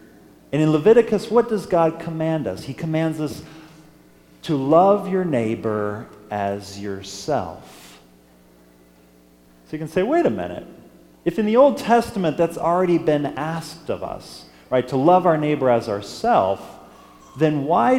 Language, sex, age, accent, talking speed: English, male, 40-59, American, 145 wpm